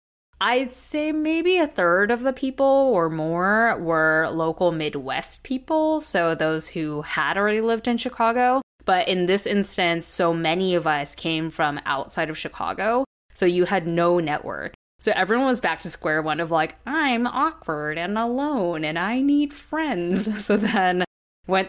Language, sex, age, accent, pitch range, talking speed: English, female, 20-39, American, 160-230 Hz, 165 wpm